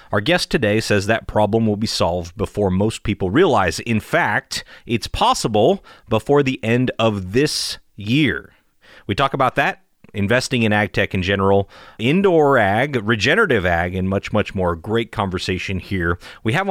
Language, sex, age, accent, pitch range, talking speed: English, male, 30-49, American, 100-135 Hz, 165 wpm